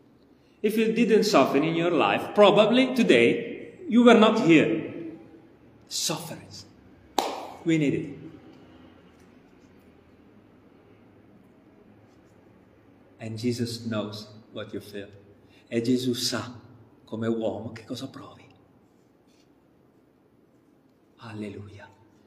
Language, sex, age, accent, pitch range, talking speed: Italian, male, 40-59, native, 115-165 Hz, 85 wpm